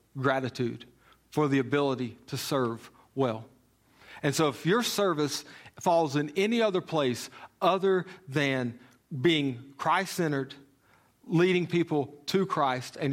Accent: American